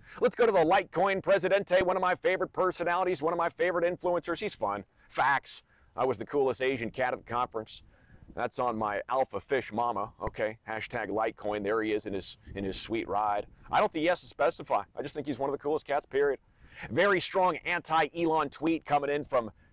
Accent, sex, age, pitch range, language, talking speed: American, male, 40-59, 110-175 Hz, English, 210 wpm